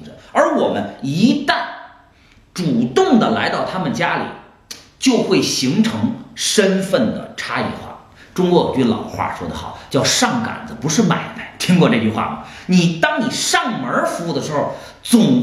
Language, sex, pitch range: Chinese, male, 170-250 Hz